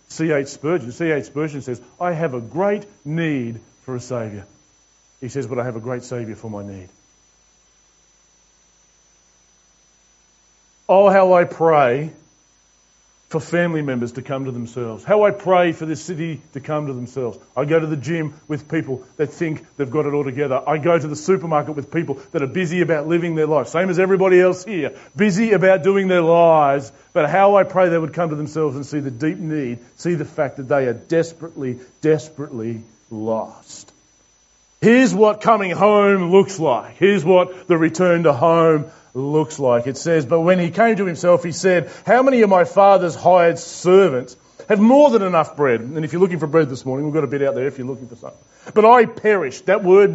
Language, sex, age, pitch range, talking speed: English, male, 40-59, 120-180 Hz, 200 wpm